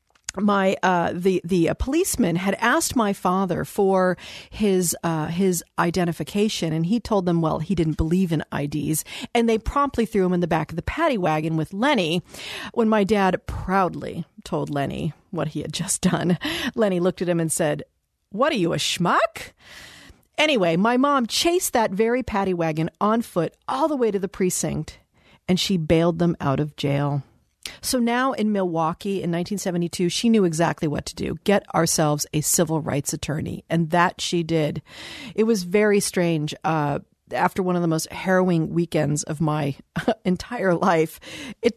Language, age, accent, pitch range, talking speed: English, 50-69, American, 160-205 Hz, 175 wpm